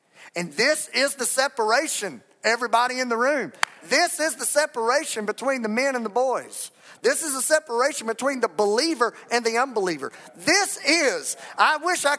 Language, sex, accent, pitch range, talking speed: English, male, American, 200-265 Hz, 165 wpm